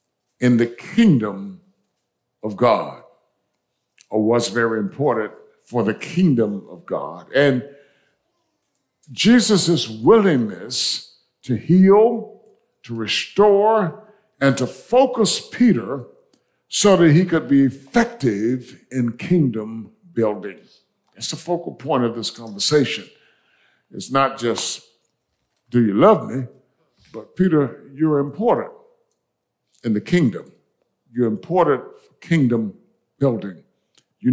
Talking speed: 105 wpm